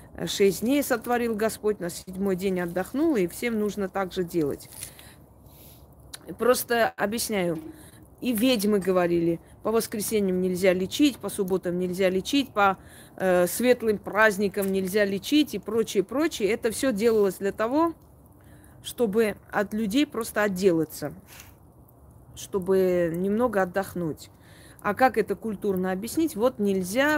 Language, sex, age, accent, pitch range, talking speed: Russian, female, 20-39, native, 175-220 Hz, 125 wpm